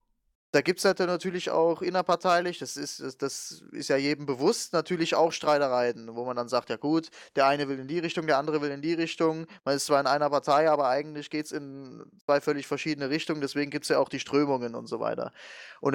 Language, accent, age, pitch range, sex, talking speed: English, German, 20-39, 145-175 Hz, male, 235 wpm